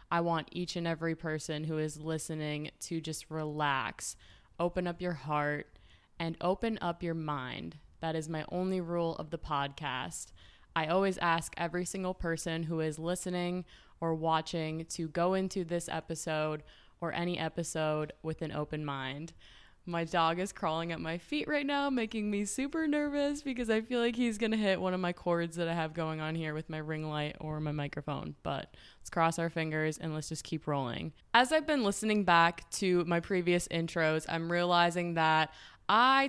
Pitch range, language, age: 155-180 Hz, English, 20-39